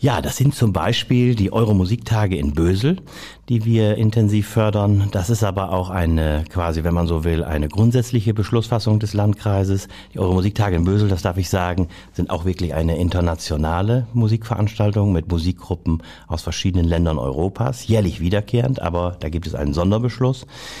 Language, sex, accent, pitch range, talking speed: German, male, German, 90-110 Hz, 160 wpm